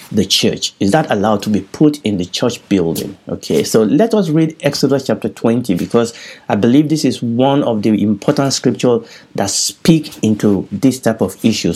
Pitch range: 105-135 Hz